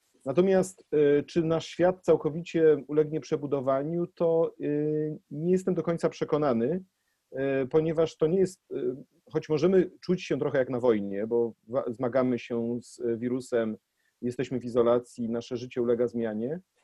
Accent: native